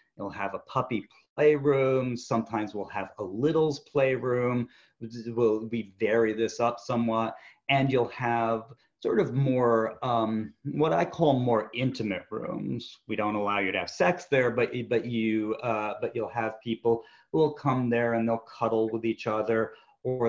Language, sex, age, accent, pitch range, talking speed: English, male, 40-59, American, 105-125 Hz, 165 wpm